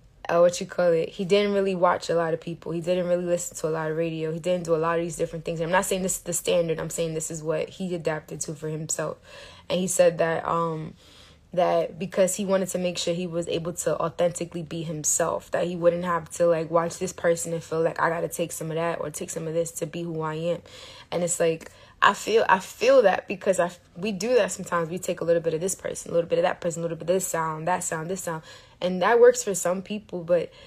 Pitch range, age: 165-185 Hz, 20-39